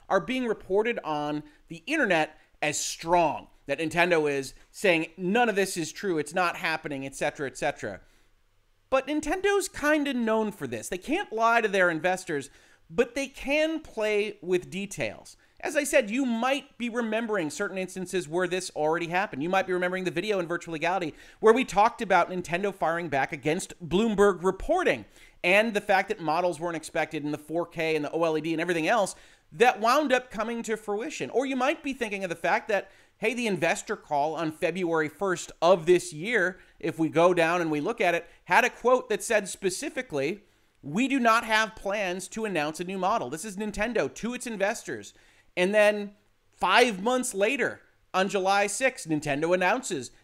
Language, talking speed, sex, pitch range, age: English, 185 wpm, male, 165-230 Hz, 30-49